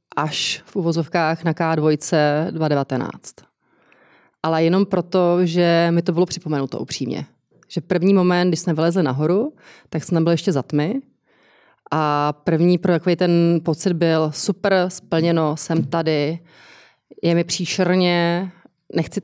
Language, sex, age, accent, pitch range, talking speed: Czech, female, 30-49, native, 150-180 Hz, 130 wpm